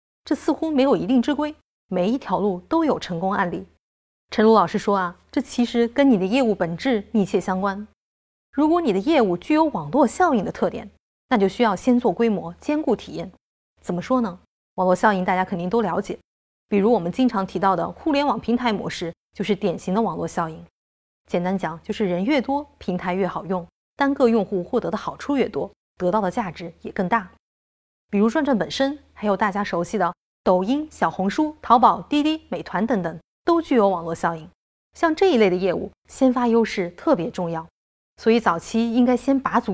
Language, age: Chinese, 20-39